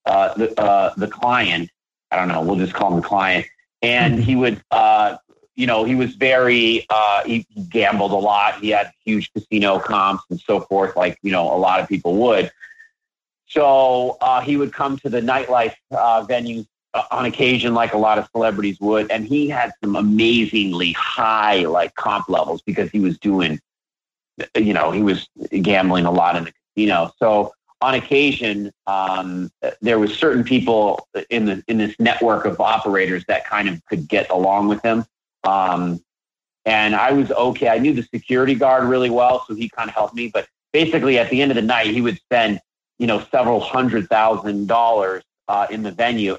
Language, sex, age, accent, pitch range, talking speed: English, male, 40-59, American, 100-125 Hz, 190 wpm